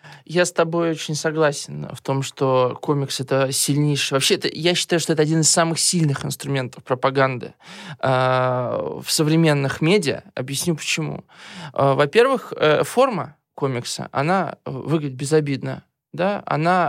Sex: male